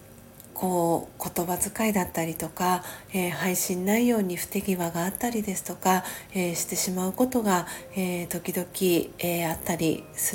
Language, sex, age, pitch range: Japanese, female, 40-59, 175-200 Hz